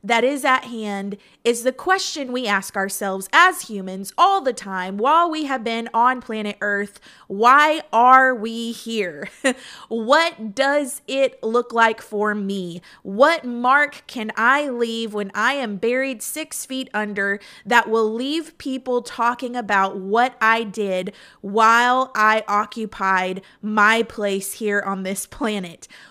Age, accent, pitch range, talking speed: 20-39, American, 205-270 Hz, 145 wpm